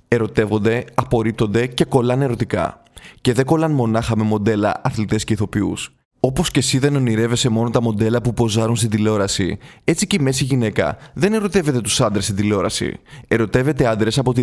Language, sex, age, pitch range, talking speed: Greek, male, 20-39, 110-135 Hz, 170 wpm